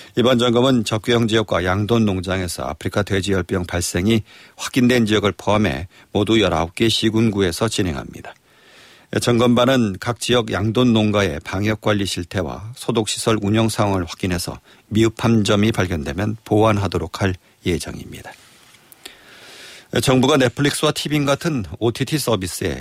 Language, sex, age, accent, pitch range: Korean, male, 50-69, native, 95-120 Hz